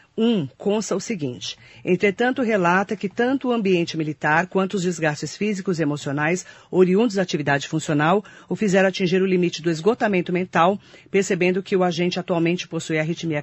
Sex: female